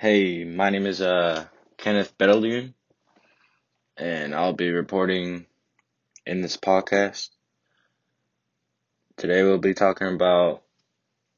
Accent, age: American, 20-39